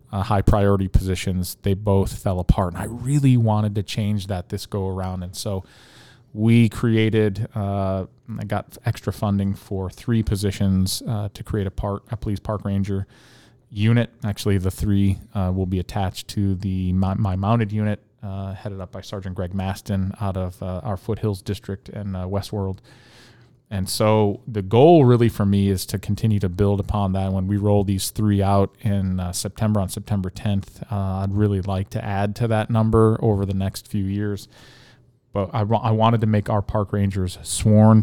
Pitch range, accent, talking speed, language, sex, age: 95-110 Hz, American, 190 wpm, English, male, 20-39